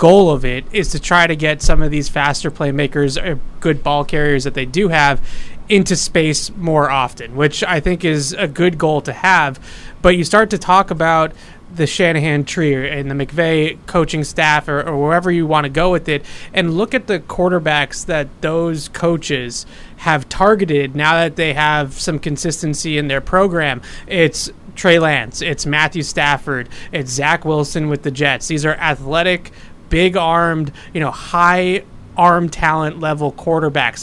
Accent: American